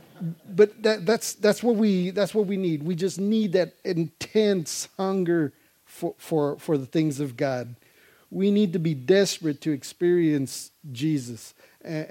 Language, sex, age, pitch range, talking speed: English, male, 50-69, 140-180 Hz, 160 wpm